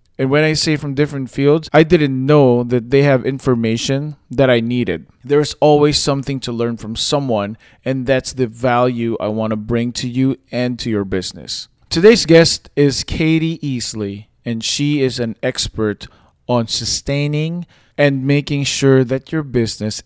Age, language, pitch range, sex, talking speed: 20-39, English, 115-145 Hz, male, 170 wpm